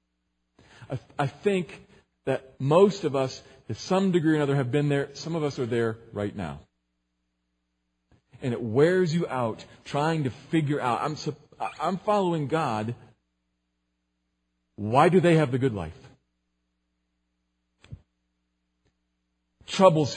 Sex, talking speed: male, 125 wpm